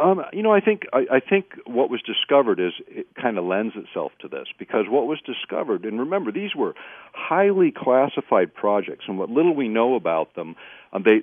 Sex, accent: male, American